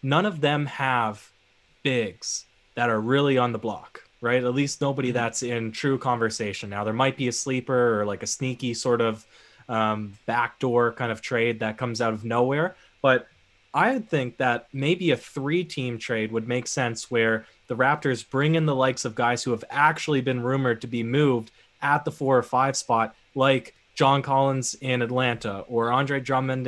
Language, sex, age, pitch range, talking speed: English, male, 20-39, 115-140 Hz, 190 wpm